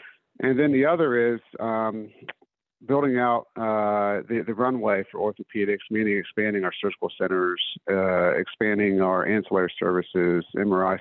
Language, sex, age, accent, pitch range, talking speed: English, male, 50-69, American, 95-110 Hz, 135 wpm